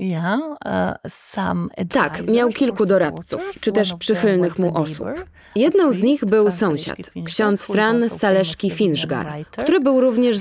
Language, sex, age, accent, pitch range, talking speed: Polish, female, 20-39, native, 175-220 Hz, 120 wpm